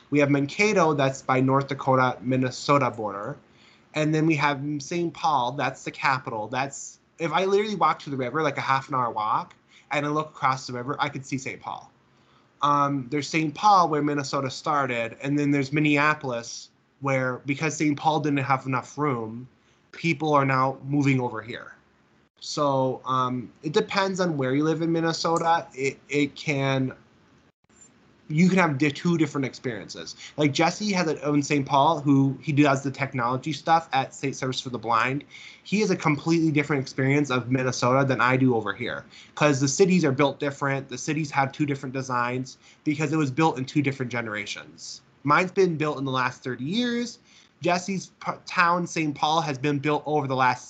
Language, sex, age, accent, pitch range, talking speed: English, male, 20-39, American, 130-155 Hz, 185 wpm